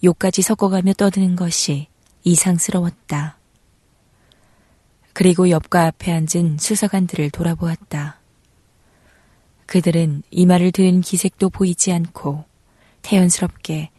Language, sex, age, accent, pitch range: Korean, female, 20-39, native, 155-190 Hz